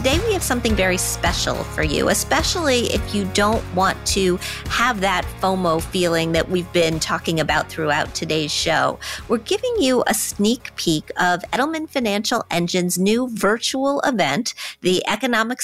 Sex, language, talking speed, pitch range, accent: female, English, 155 wpm, 180-245 Hz, American